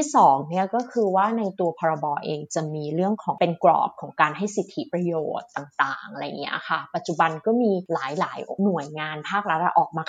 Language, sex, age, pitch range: Thai, female, 30-49, 165-220 Hz